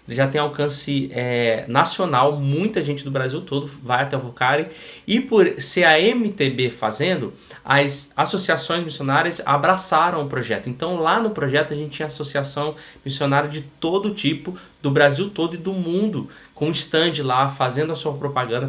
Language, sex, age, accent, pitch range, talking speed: Portuguese, male, 20-39, Brazilian, 130-160 Hz, 165 wpm